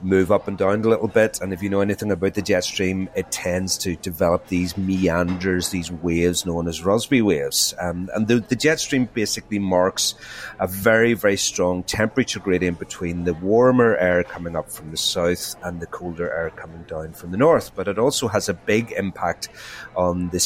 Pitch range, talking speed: 90-110 Hz, 200 wpm